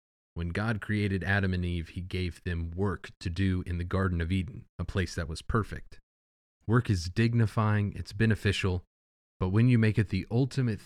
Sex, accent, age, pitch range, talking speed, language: male, American, 30-49, 80-110 Hz, 190 wpm, English